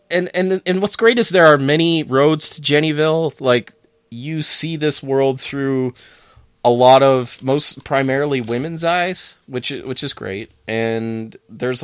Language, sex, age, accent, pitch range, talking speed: English, male, 20-39, American, 110-140 Hz, 155 wpm